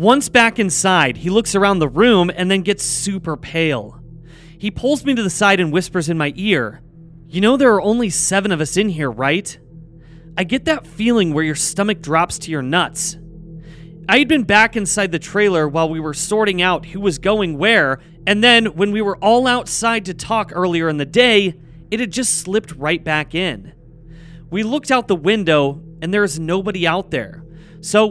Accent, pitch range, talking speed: American, 160-210 Hz, 200 wpm